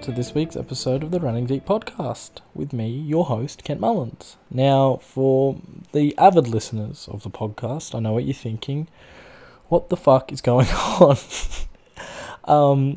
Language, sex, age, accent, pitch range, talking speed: English, male, 20-39, Australian, 110-145 Hz, 160 wpm